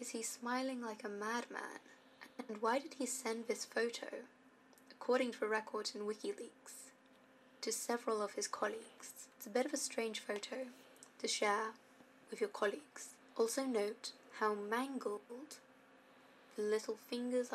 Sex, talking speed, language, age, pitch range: female, 145 wpm, English, 10-29, 210-265 Hz